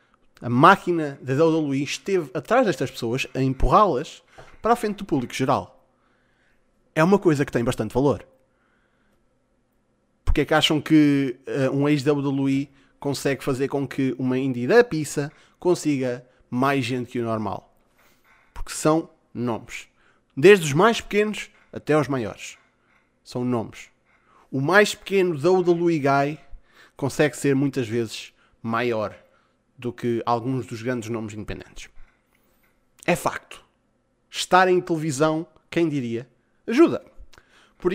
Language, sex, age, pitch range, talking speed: Portuguese, male, 20-39, 130-175 Hz, 130 wpm